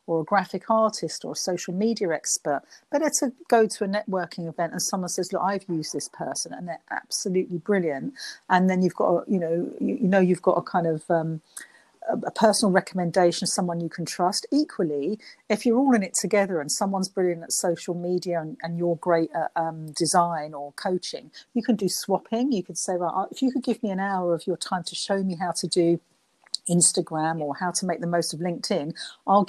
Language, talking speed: English, 220 wpm